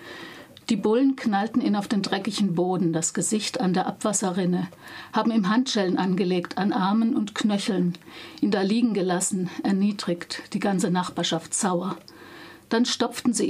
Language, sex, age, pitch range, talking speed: German, female, 50-69, 180-220 Hz, 145 wpm